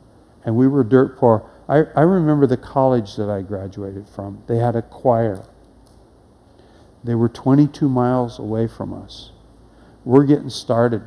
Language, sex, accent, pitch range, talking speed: English, male, American, 105-125 Hz, 150 wpm